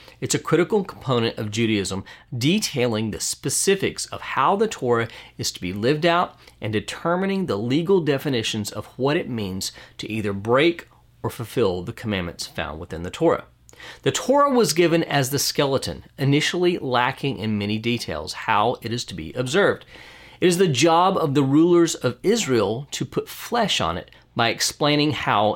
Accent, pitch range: American, 110-160 Hz